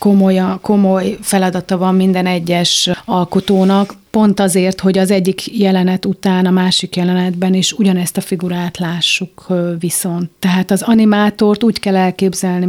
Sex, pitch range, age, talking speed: female, 180-200 Hz, 30-49, 135 wpm